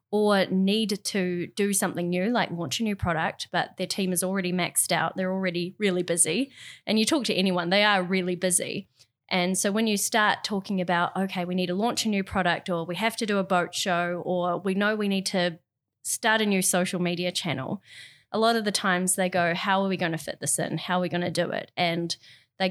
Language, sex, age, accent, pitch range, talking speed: English, female, 20-39, Australian, 175-205 Hz, 240 wpm